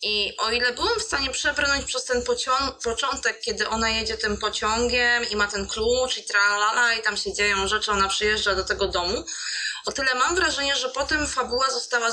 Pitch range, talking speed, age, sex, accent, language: 215-260 Hz, 200 wpm, 20-39, female, native, Polish